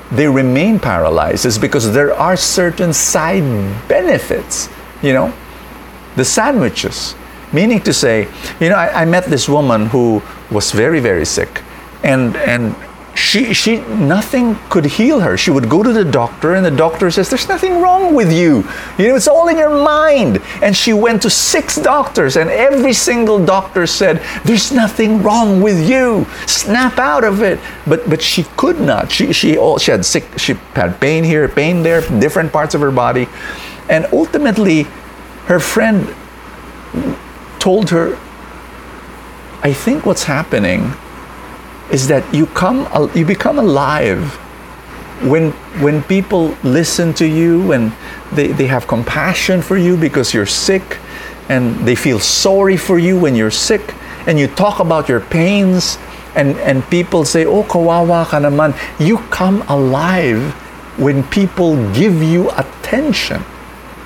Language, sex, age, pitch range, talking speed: English, male, 50-69, 140-205 Hz, 155 wpm